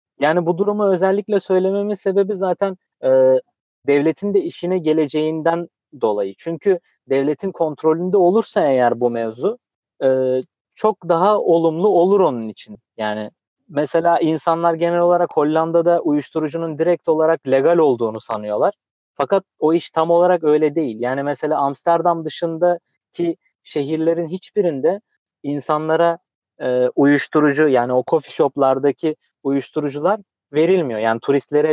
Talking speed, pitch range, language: 120 wpm, 135-175 Hz, Turkish